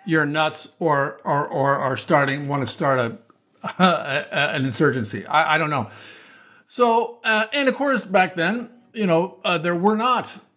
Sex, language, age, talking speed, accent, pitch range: male, English, 50-69, 165 wpm, American, 135-190 Hz